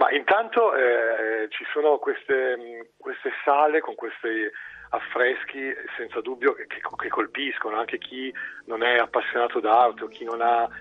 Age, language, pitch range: 40-59, Italian, 315-420 Hz